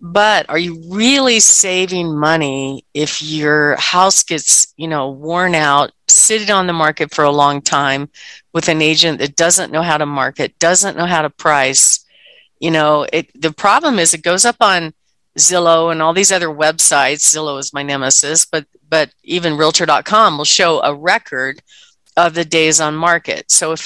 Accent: American